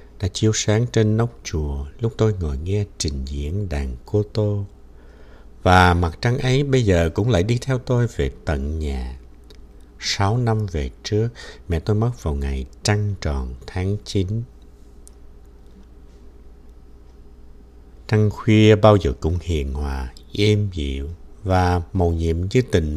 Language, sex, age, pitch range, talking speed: Vietnamese, male, 60-79, 70-110 Hz, 145 wpm